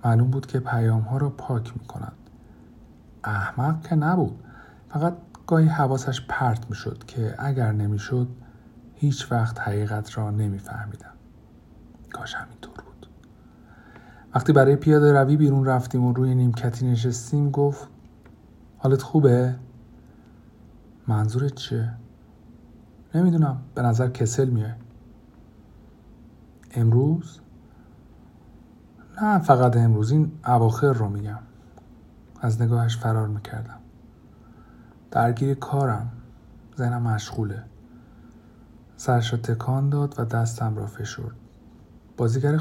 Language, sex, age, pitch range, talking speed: Persian, male, 50-69, 110-135 Hz, 100 wpm